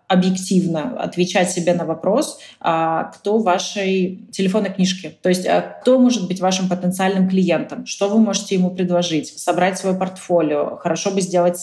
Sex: female